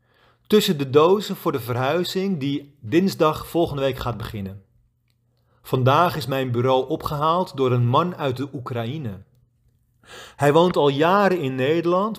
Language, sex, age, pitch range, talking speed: Dutch, male, 40-59, 120-155 Hz, 145 wpm